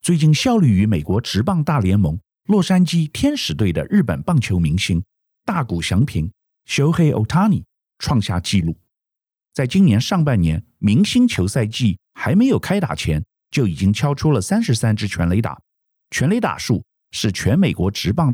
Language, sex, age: Chinese, male, 50-69